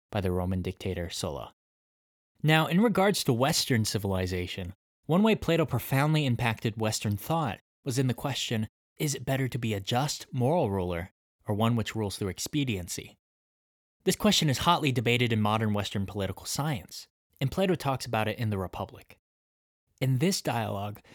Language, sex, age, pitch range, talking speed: English, male, 20-39, 95-135 Hz, 165 wpm